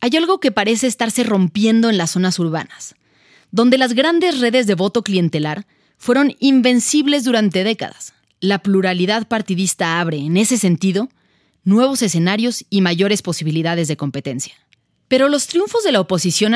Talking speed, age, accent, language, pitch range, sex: 150 wpm, 30-49, Mexican, Spanish, 170-230 Hz, female